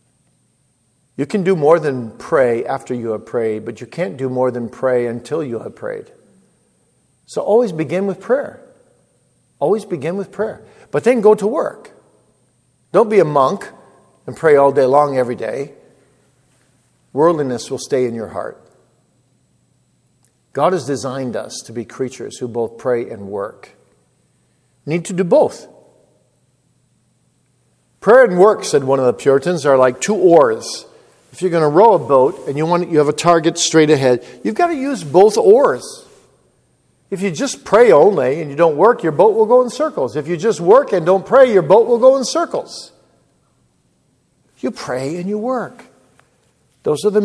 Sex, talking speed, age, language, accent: male, 175 wpm, 50-69, English, American